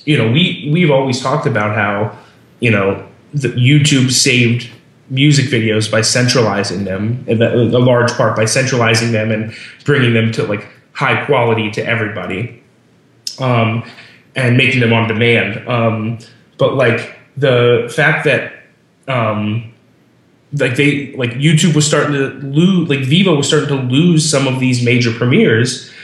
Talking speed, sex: 160 wpm, male